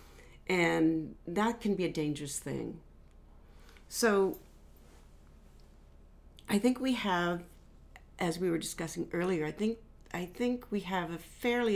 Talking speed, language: 130 wpm, English